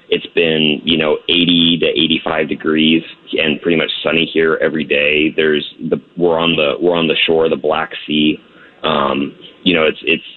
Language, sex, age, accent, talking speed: English, male, 30-49, American, 190 wpm